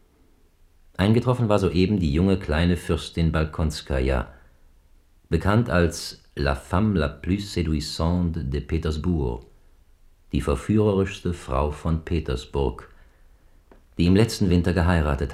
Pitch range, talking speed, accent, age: 70-85 Hz, 105 wpm, German, 50-69